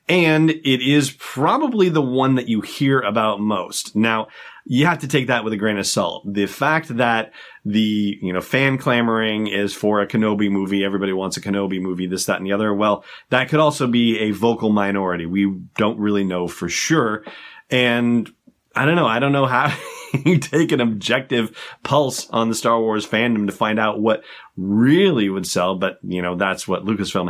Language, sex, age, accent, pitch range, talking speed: English, male, 30-49, American, 100-125 Hz, 195 wpm